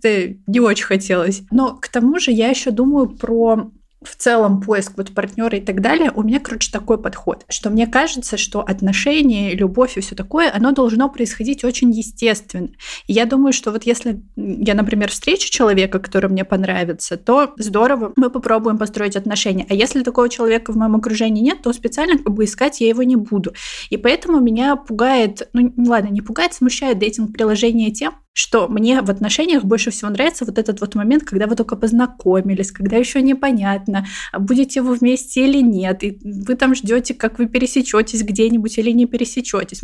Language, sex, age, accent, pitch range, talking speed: Russian, female, 20-39, native, 210-250 Hz, 180 wpm